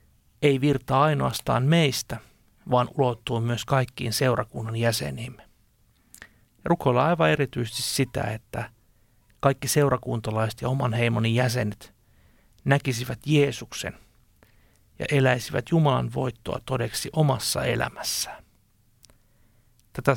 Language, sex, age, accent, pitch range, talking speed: Finnish, male, 60-79, native, 110-140 Hz, 90 wpm